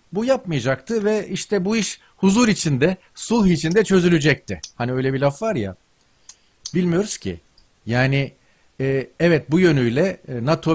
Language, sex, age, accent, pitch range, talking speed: Turkish, male, 40-59, native, 125-180 Hz, 140 wpm